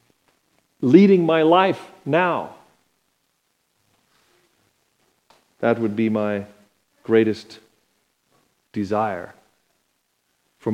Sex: male